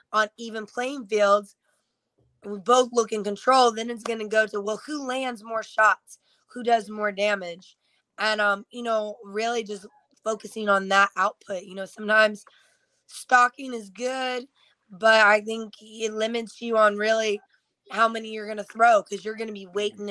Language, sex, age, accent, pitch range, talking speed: English, female, 20-39, American, 205-240 Hz, 180 wpm